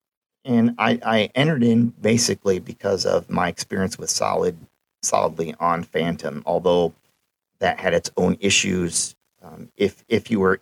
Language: English